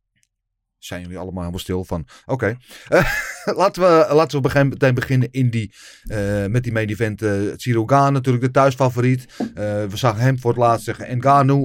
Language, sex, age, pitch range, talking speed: Dutch, male, 30-49, 110-135 Hz, 190 wpm